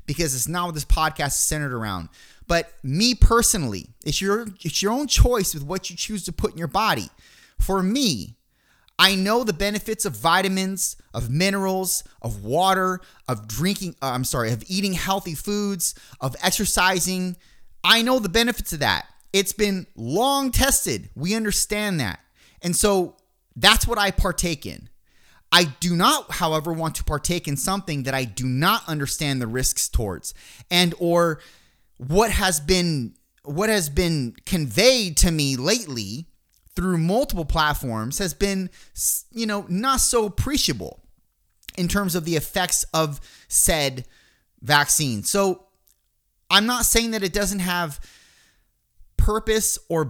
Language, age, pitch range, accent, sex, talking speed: English, 30-49, 145-205 Hz, American, male, 150 wpm